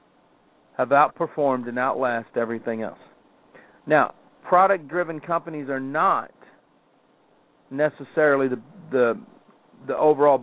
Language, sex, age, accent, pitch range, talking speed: English, male, 50-69, American, 130-175 Hz, 90 wpm